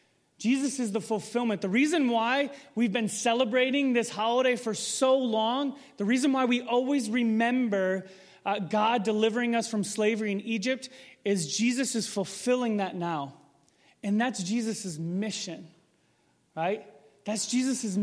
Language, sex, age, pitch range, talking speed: English, male, 30-49, 175-230 Hz, 140 wpm